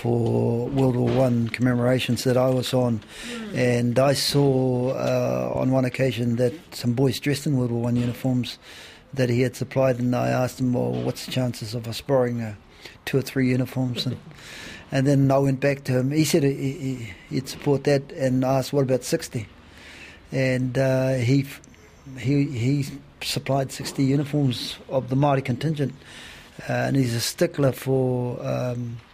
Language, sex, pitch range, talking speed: English, male, 125-140 Hz, 170 wpm